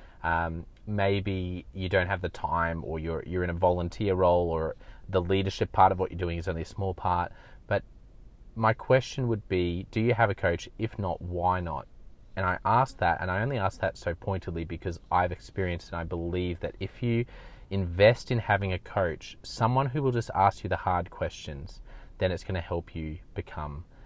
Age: 30-49